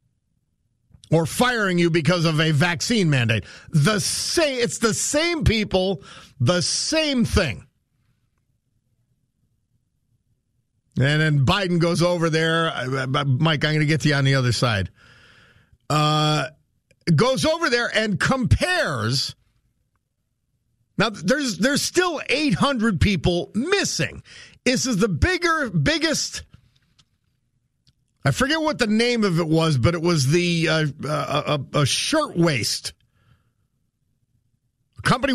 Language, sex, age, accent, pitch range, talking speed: English, male, 50-69, American, 125-200 Hz, 120 wpm